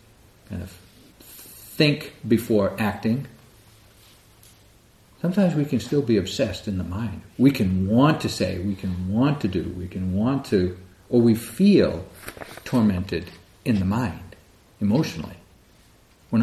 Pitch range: 90-120 Hz